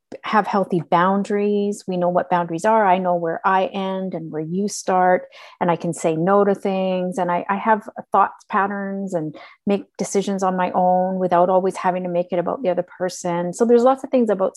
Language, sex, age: English, female, 30-49